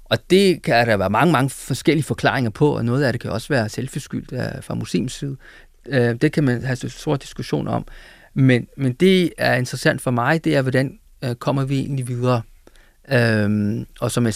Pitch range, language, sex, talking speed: 120-155 Hz, Danish, male, 210 wpm